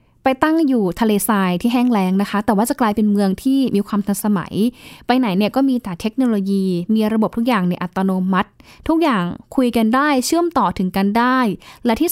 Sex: female